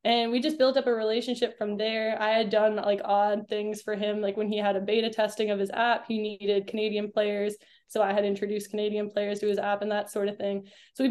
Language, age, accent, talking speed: English, 10-29, American, 255 wpm